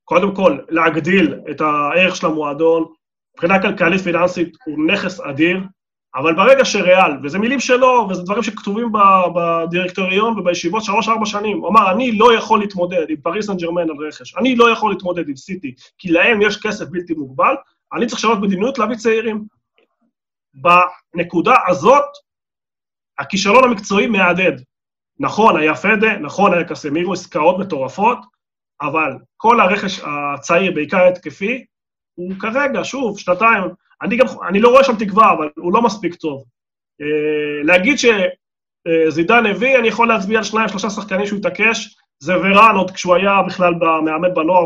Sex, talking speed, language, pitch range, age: male, 145 wpm, Hebrew, 170-220 Hz, 30-49